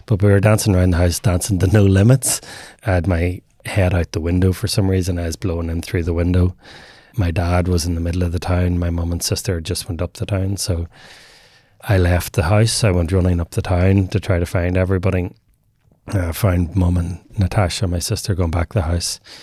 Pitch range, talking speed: 90-105 Hz, 230 wpm